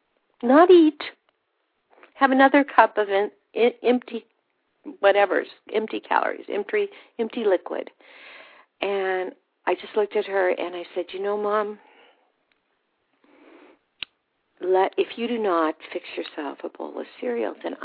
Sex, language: female, English